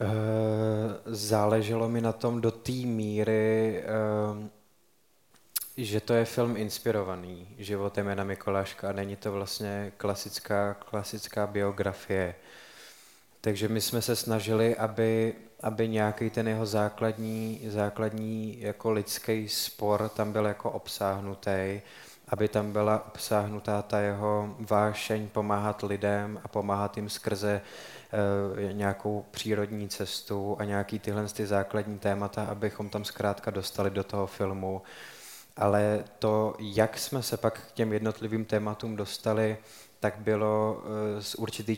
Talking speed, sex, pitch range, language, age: 120 wpm, male, 105-110 Hz, Czech, 20-39